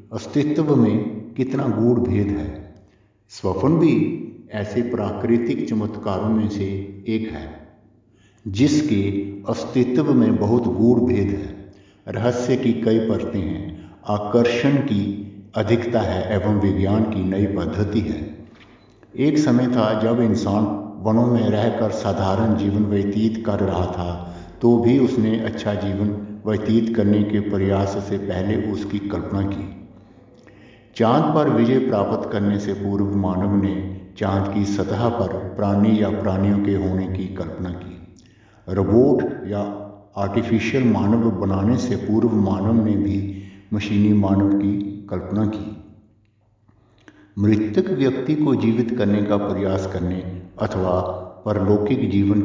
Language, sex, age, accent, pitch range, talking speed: Hindi, male, 60-79, native, 100-115 Hz, 130 wpm